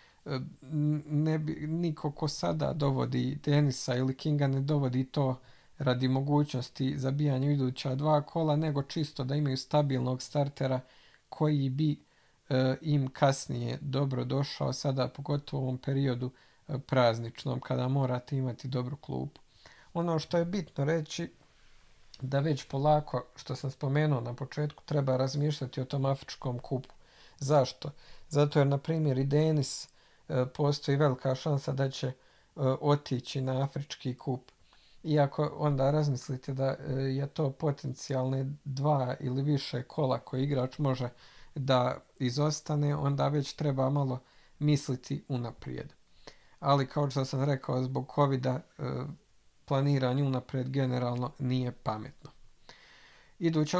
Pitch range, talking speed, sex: 130-150 Hz, 125 wpm, male